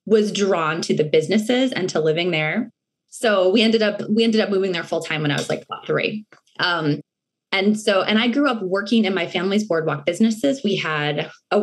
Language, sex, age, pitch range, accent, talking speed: English, female, 20-39, 185-250 Hz, American, 215 wpm